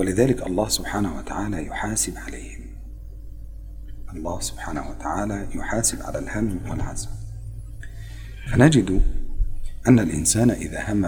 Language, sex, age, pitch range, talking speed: Indonesian, male, 40-59, 95-105 Hz, 90 wpm